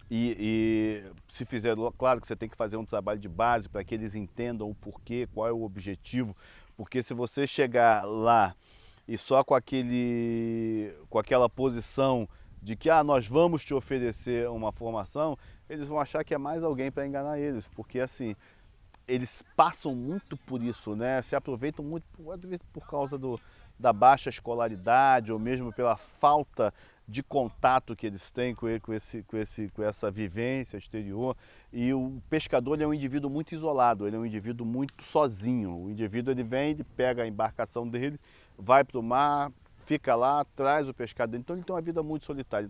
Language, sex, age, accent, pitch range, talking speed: Portuguese, male, 40-59, Brazilian, 110-140 Hz, 185 wpm